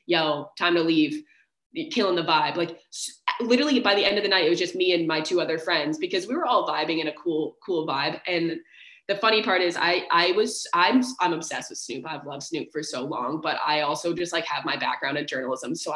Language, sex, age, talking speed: English, female, 20-39, 240 wpm